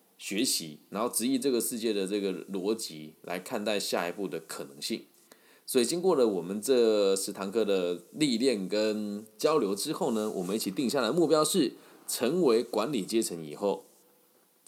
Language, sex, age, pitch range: Chinese, male, 20-39, 95-125 Hz